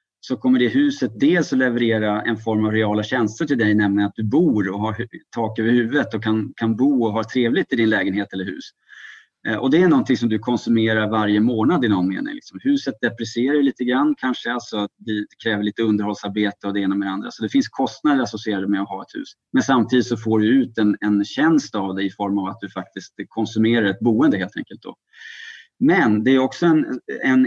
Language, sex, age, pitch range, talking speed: Swedish, male, 30-49, 105-125 Hz, 225 wpm